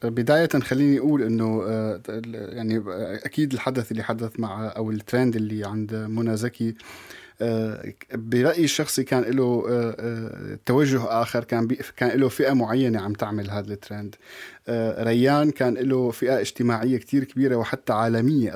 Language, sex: Arabic, male